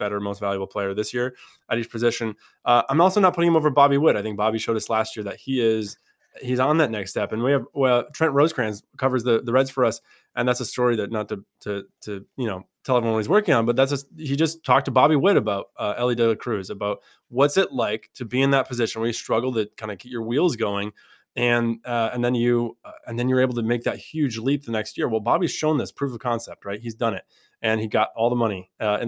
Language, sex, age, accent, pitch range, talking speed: English, male, 20-39, American, 105-125 Hz, 270 wpm